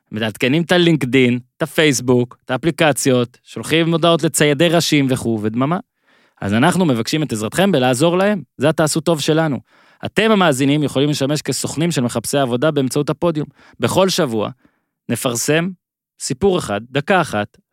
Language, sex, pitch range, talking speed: Hebrew, male, 125-165 Hz, 140 wpm